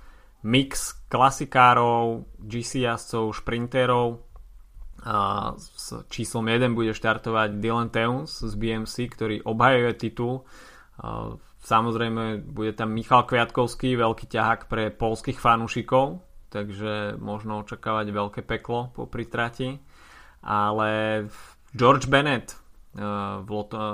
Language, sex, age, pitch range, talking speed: Slovak, male, 20-39, 105-120 Hz, 95 wpm